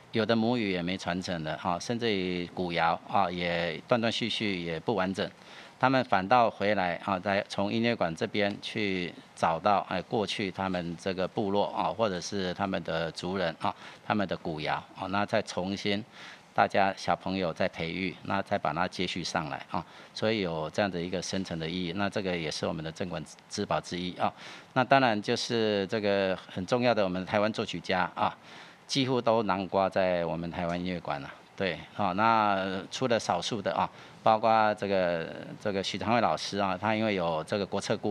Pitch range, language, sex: 90-105 Hz, Chinese, male